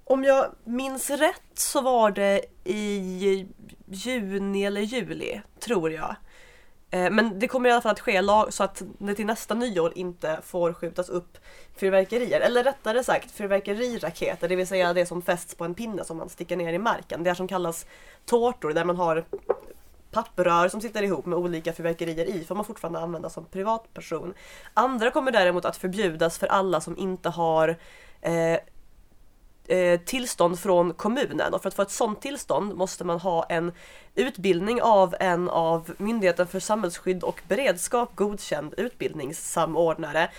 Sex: female